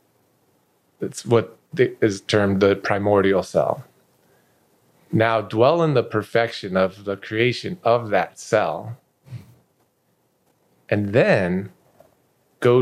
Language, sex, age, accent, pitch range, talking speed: English, male, 30-49, American, 100-125 Hz, 100 wpm